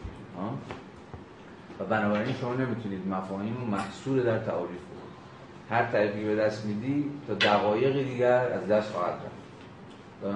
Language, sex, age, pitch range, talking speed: Persian, male, 30-49, 100-120 Hz, 120 wpm